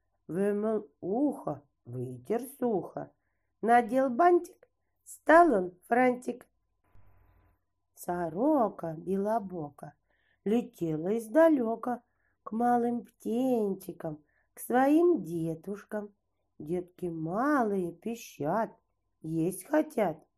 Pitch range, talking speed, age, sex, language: 165-245 Hz, 70 wpm, 40-59, female, Russian